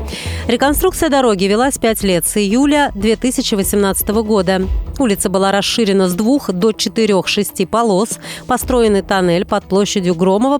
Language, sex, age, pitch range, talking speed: Russian, female, 30-49, 190-245 Hz, 130 wpm